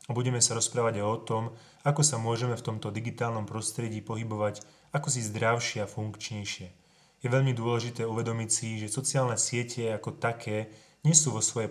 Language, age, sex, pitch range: Slovak, 20-39, male, 105-125 Hz